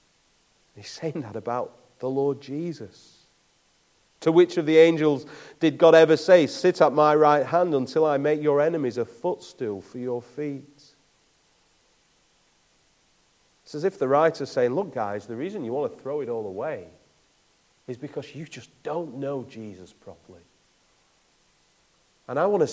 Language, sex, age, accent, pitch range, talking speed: English, male, 40-59, British, 115-150 Hz, 160 wpm